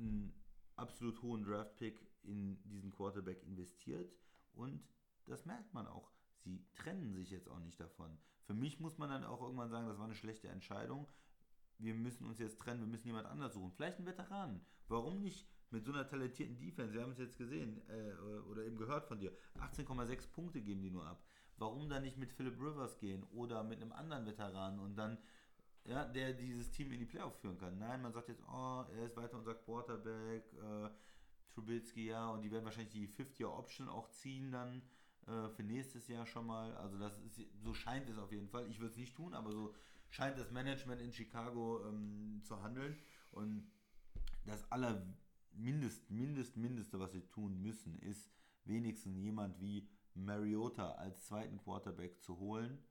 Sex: male